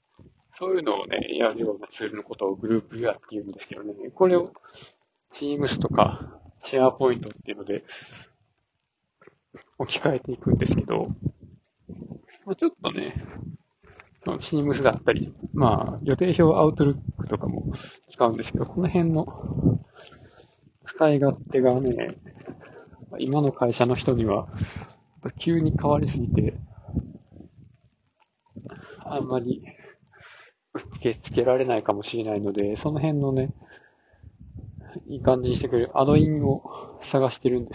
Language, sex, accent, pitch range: Japanese, male, native, 120-150 Hz